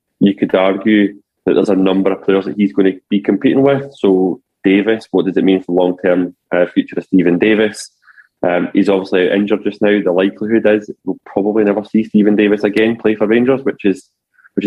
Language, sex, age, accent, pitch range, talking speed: English, male, 20-39, British, 95-105 Hz, 210 wpm